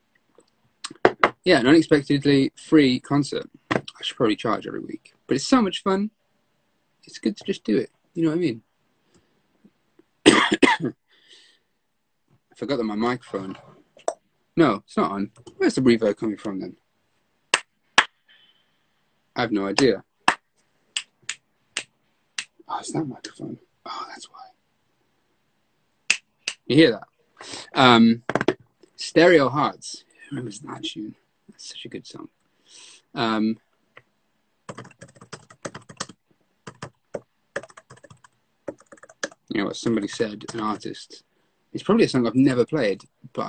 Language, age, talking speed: English, 30-49, 115 wpm